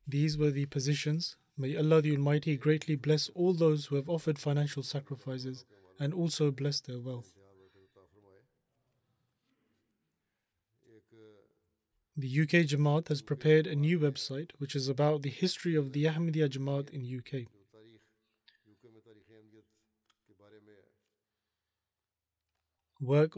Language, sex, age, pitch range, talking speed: English, male, 30-49, 125-155 Hz, 110 wpm